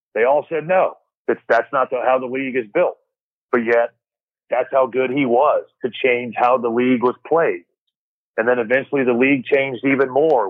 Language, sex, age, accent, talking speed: English, male, 40-59, American, 190 wpm